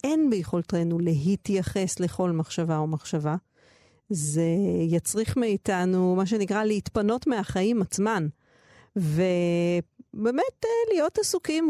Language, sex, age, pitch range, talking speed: Hebrew, female, 40-59, 170-215 Hz, 90 wpm